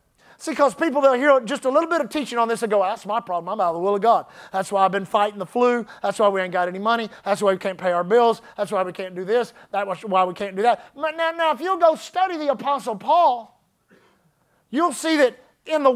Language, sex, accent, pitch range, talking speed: English, male, American, 235-320 Hz, 275 wpm